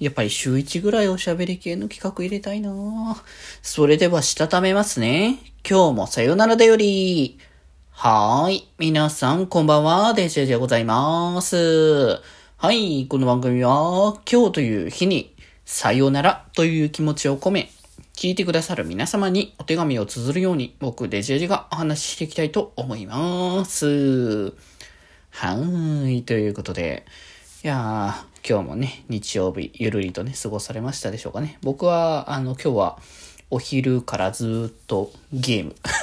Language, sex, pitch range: Japanese, male, 115-180 Hz